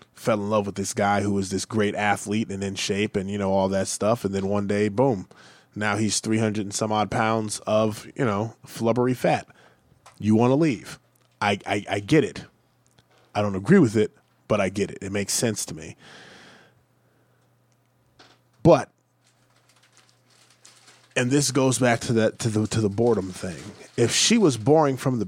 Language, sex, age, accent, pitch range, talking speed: English, male, 20-39, American, 100-125 Hz, 190 wpm